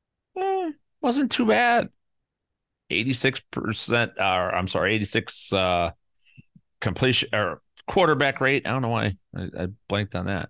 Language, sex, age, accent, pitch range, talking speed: English, male, 40-59, American, 85-115 Hz, 125 wpm